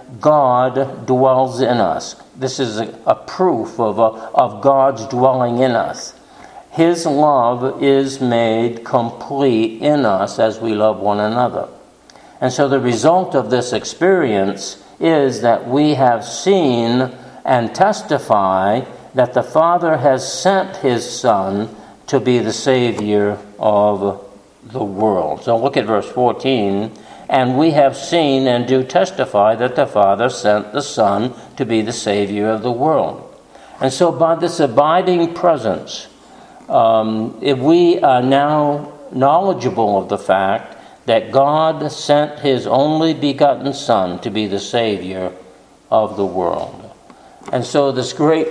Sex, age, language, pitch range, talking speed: male, 60-79, English, 110-140 Hz, 140 wpm